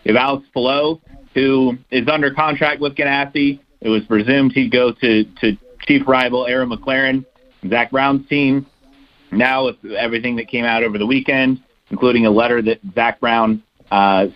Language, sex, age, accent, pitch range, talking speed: English, male, 40-59, American, 110-135 Hz, 165 wpm